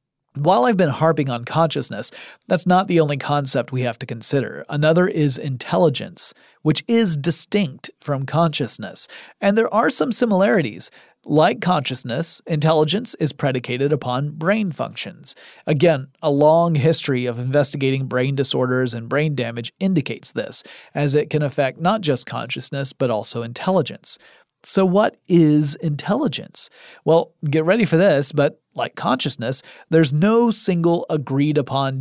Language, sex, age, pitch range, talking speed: English, male, 40-59, 135-170 Hz, 140 wpm